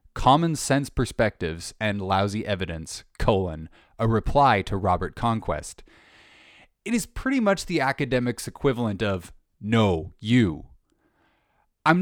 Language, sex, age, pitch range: English, male, 20-39, 90-135 Hz